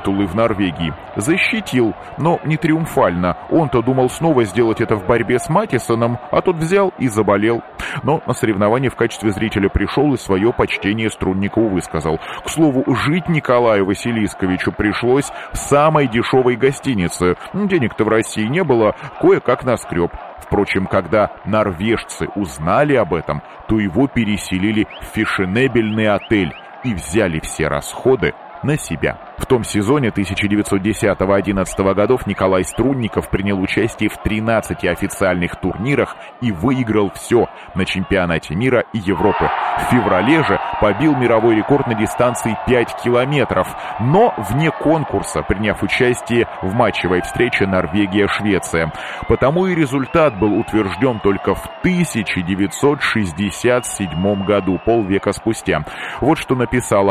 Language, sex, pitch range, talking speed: Russian, male, 95-125 Hz, 130 wpm